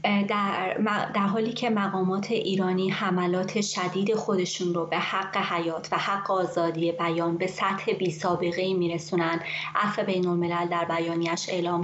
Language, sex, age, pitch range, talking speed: Persian, female, 20-39, 170-190 Hz, 125 wpm